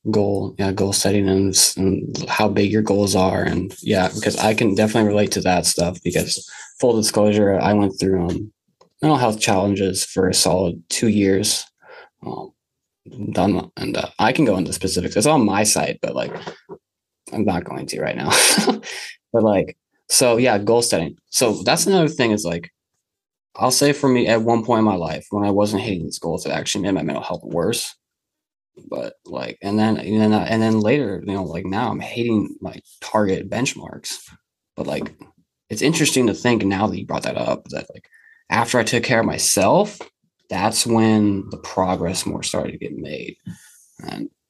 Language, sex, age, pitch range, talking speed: English, male, 20-39, 100-120 Hz, 190 wpm